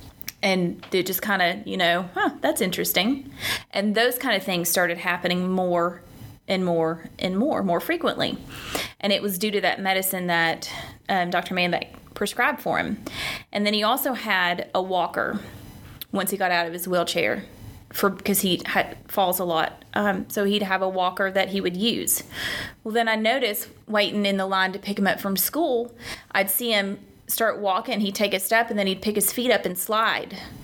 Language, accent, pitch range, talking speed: English, American, 180-220 Hz, 195 wpm